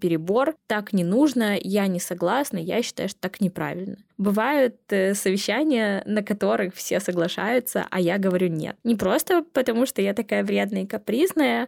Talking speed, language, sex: 160 wpm, Russian, female